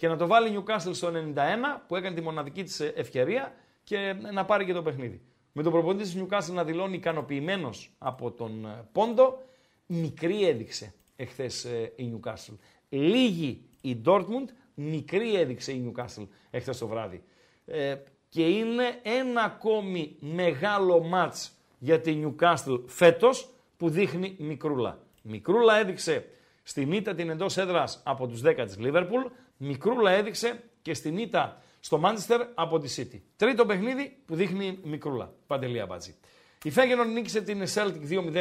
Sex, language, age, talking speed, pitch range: male, Greek, 50-69, 150 wpm, 150-215 Hz